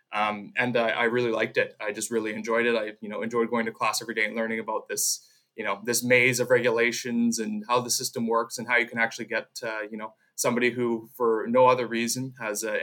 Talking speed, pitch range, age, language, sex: 250 wpm, 110-125 Hz, 20-39, English, male